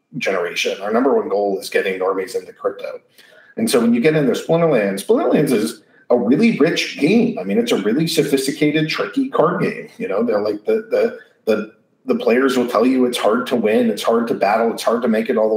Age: 40-59